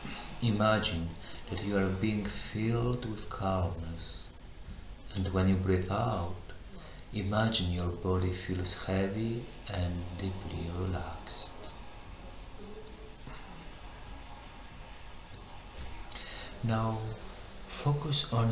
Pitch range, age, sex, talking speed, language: 85-100 Hz, 40-59, male, 80 wpm, Polish